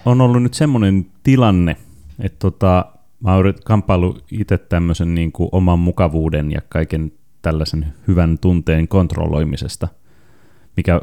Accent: native